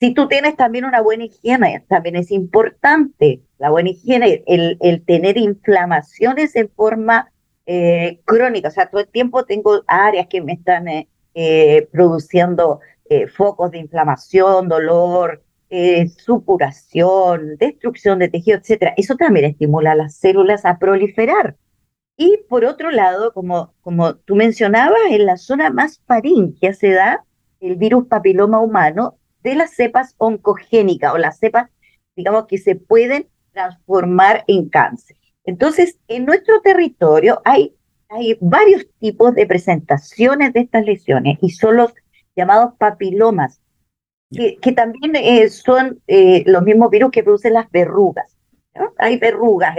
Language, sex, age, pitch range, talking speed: Spanish, female, 40-59, 180-240 Hz, 145 wpm